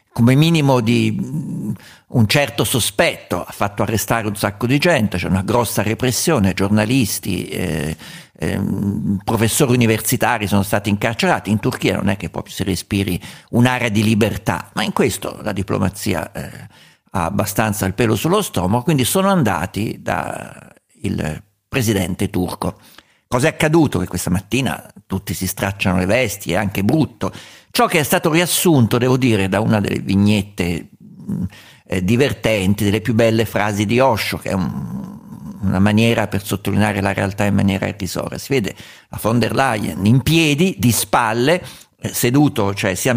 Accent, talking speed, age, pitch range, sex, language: native, 155 wpm, 50-69, 100-135 Hz, male, Italian